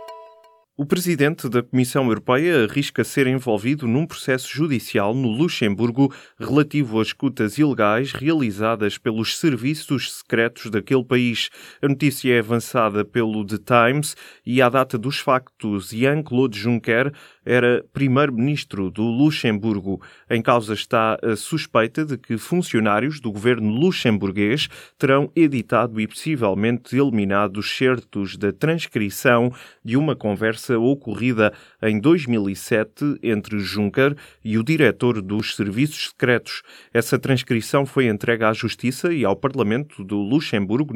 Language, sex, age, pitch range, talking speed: Portuguese, male, 20-39, 110-135 Hz, 125 wpm